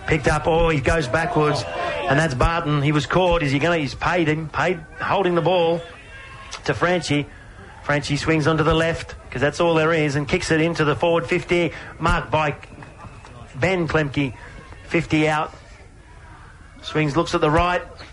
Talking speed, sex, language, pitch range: 170 wpm, male, English, 120-165 Hz